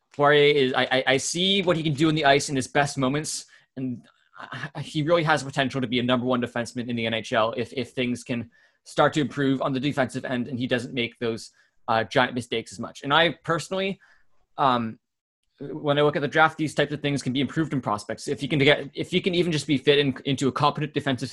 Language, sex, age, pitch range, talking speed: English, male, 20-39, 120-145 Hz, 240 wpm